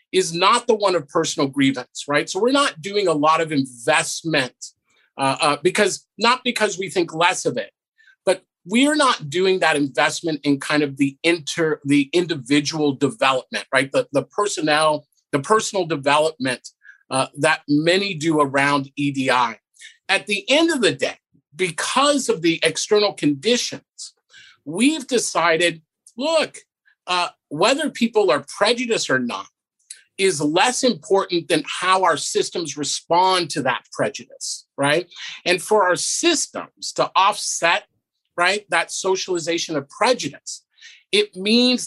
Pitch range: 145-200 Hz